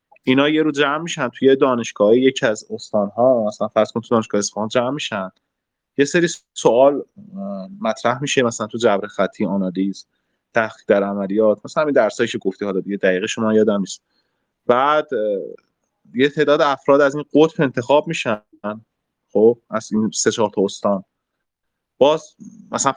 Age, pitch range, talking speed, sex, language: 30-49, 100-140 Hz, 150 wpm, male, Persian